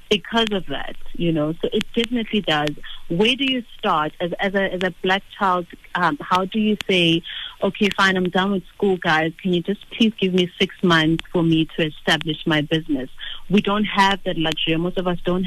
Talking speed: 215 wpm